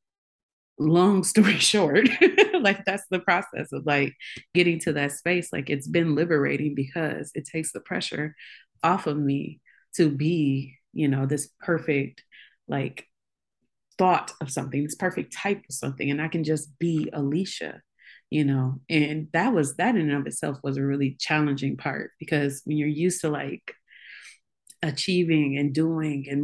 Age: 30-49